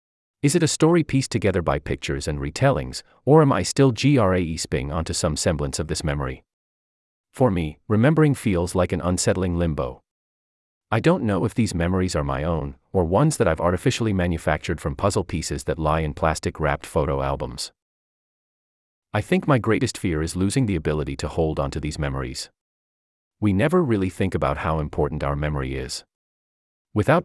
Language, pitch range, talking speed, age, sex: English, 75-105 Hz, 175 wpm, 30-49, male